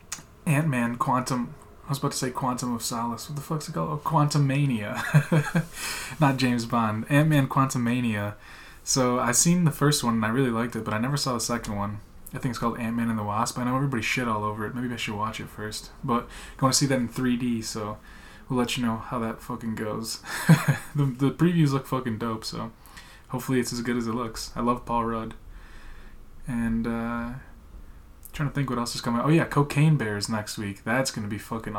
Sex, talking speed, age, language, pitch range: male, 225 wpm, 20-39, English, 110-130 Hz